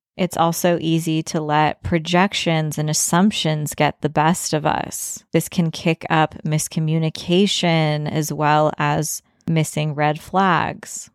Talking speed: 130 wpm